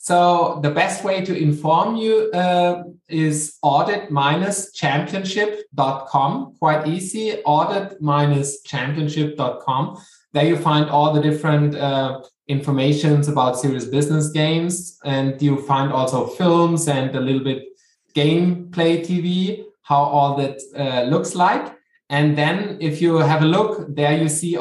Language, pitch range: English, 145-175 Hz